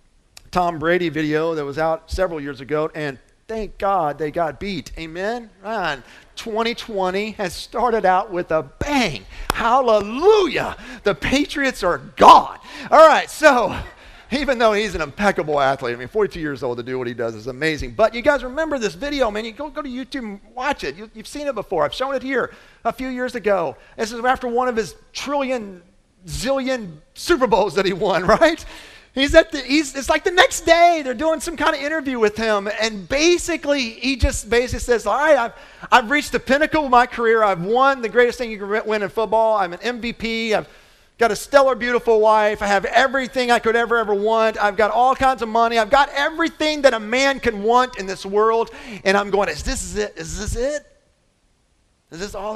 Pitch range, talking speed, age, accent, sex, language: 190-265 Hz, 205 wpm, 40-59, American, male, English